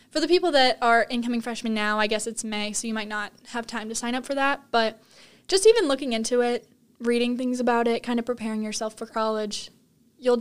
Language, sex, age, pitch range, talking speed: English, female, 10-29, 225-260 Hz, 230 wpm